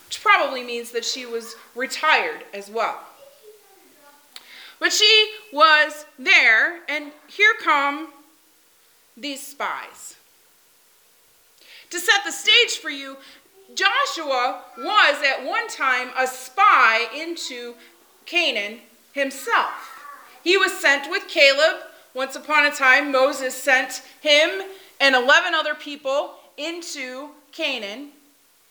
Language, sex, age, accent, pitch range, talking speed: English, female, 30-49, American, 260-385 Hz, 110 wpm